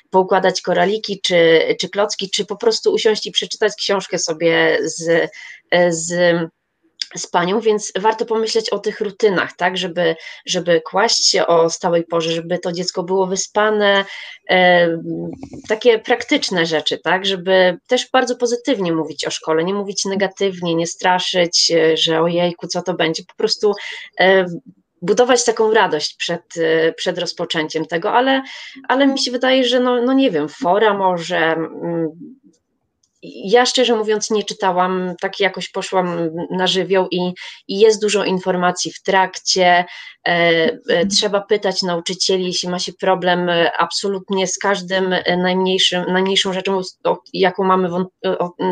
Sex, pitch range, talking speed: female, 175-210 Hz, 140 wpm